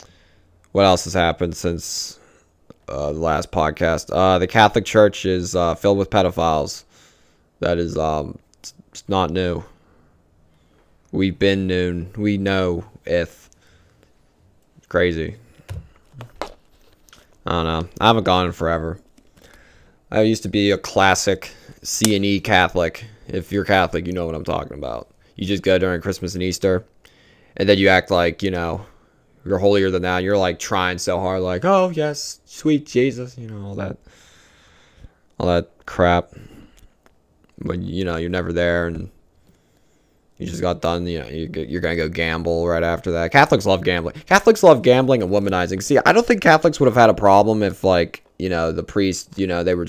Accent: American